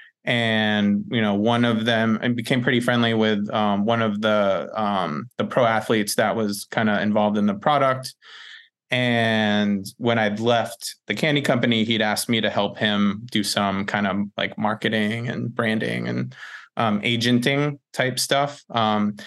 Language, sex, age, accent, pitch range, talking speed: English, male, 20-39, American, 105-125 Hz, 170 wpm